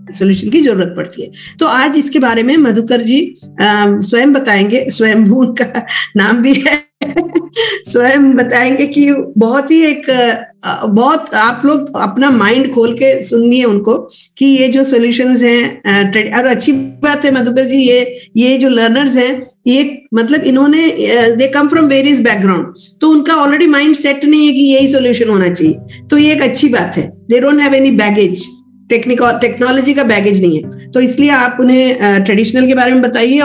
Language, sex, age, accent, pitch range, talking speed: Hindi, female, 50-69, native, 220-280 Hz, 170 wpm